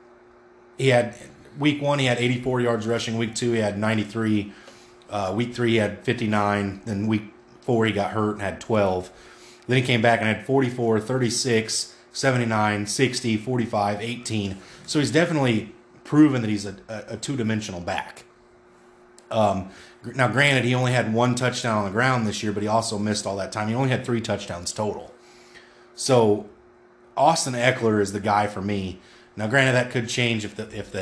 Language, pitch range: English, 100-120 Hz